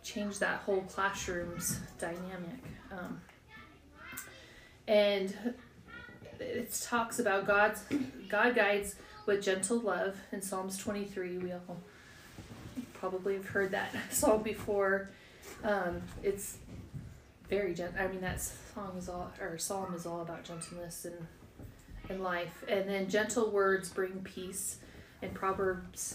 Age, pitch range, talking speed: 30-49, 185-215 Hz, 125 wpm